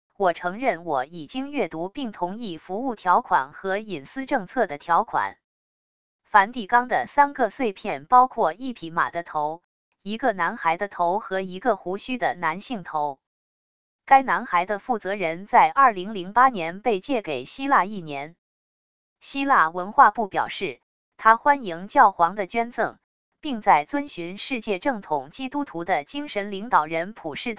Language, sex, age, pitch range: English, female, 20-39, 175-250 Hz